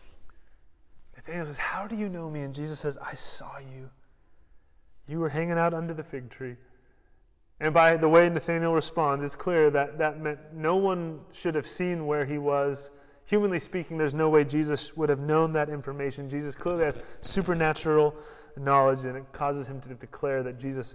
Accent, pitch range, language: American, 125-160 Hz, English